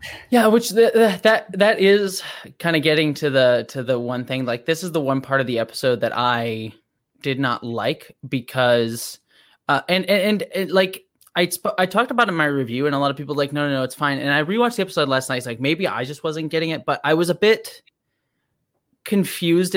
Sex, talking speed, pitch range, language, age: male, 240 wpm, 130-175 Hz, English, 20-39